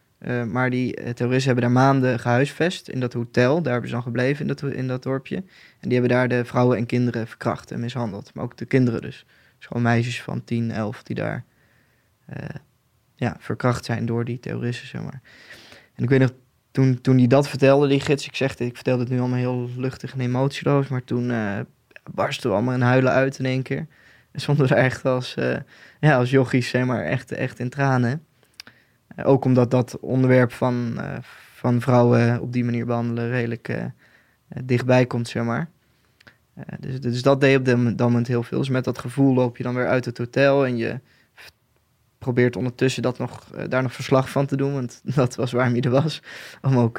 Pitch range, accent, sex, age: 120-135 Hz, Dutch, male, 20-39